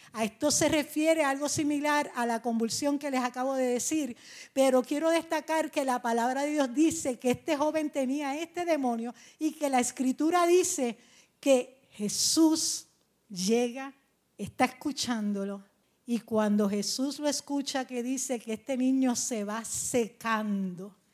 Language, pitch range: English, 225-275 Hz